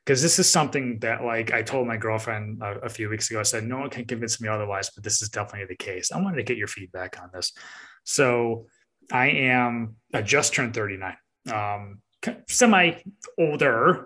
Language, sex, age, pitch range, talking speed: English, male, 20-39, 105-125 Hz, 200 wpm